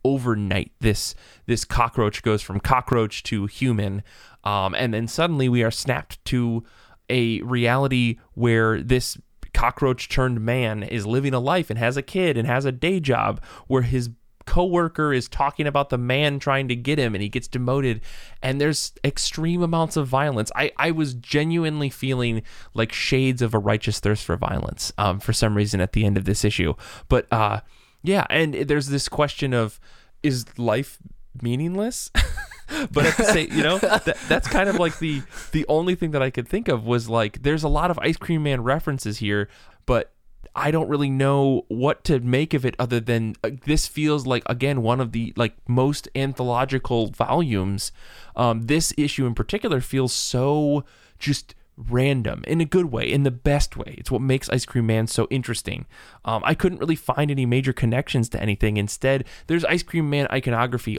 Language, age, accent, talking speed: English, 20-39, American, 185 wpm